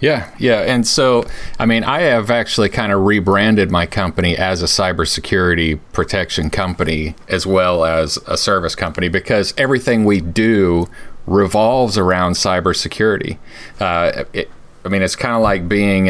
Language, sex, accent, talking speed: English, male, American, 150 wpm